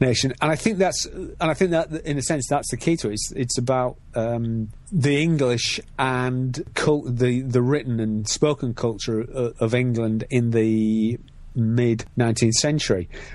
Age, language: 40-59, English